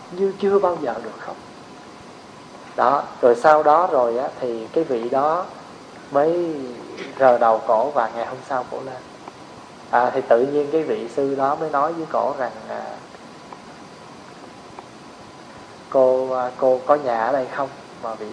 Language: Vietnamese